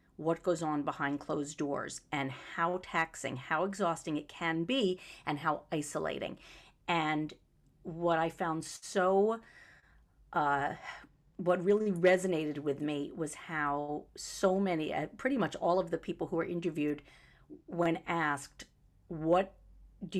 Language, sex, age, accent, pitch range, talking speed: English, female, 50-69, American, 150-190 Hz, 135 wpm